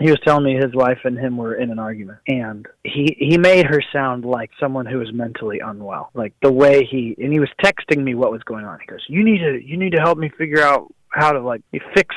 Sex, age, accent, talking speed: male, 30-49, American, 260 wpm